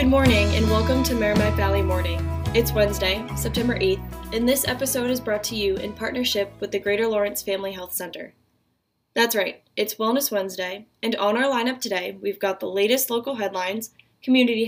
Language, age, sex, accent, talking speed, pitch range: English, 10-29, female, American, 185 wpm, 190-230 Hz